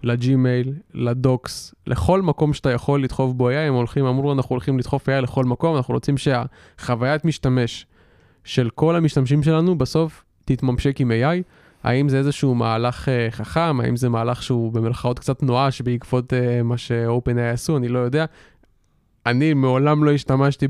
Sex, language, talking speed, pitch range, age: male, Hebrew, 160 wpm, 115-140 Hz, 20-39